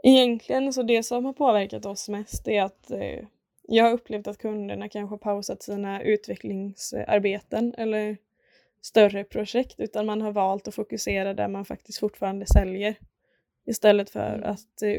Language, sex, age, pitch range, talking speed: Swedish, female, 20-39, 195-215 Hz, 155 wpm